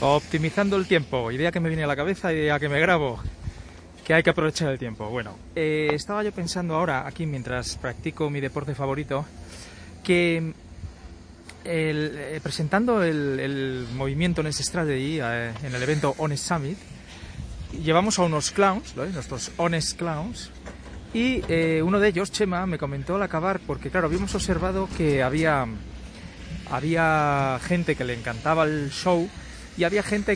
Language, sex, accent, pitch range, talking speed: Spanish, male, Spanish, 135-175 Hz, 160 wpm